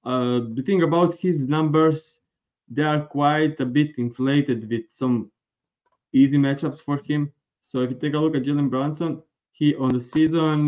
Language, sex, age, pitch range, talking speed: English, male, 20-39, 125-150 Hz, 175 wpm